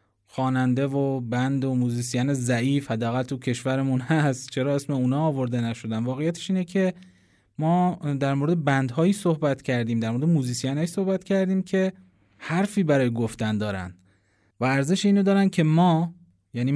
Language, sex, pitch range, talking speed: Persian, male, 115-155 Hz, 150 wpm